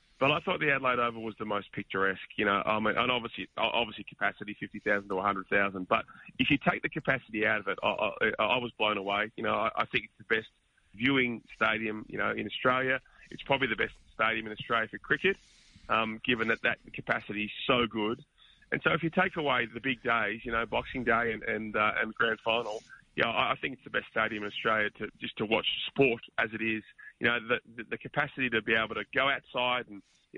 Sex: male